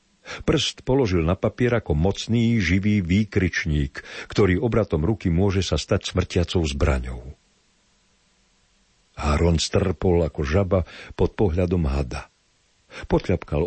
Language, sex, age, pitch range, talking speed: Slovak, male, 60-79, 75-100 Hz, 105 wpm